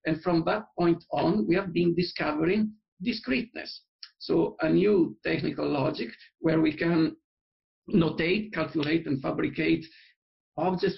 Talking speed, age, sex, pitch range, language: 125 wpm, 50-69, male, 165-200 Hz, English